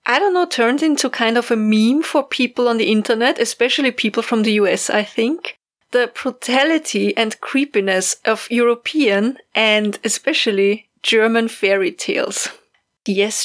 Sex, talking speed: female, 145 wpm